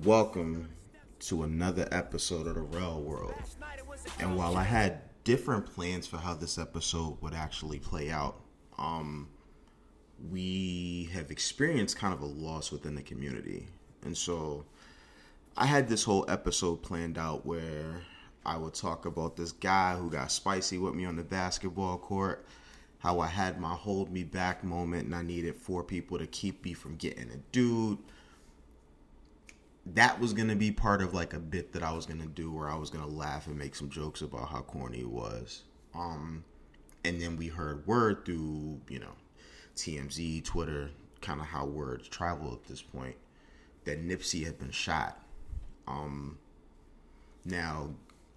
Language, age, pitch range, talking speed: English, 30-49, 75-90 Hz, 165 wpm